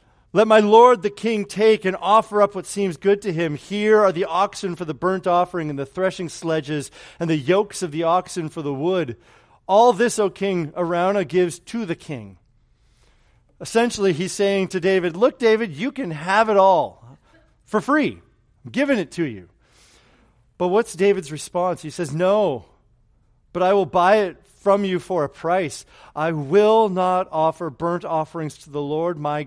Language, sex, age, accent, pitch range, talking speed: English, male, 40-59, American, 135-185 Hz, 185 wpm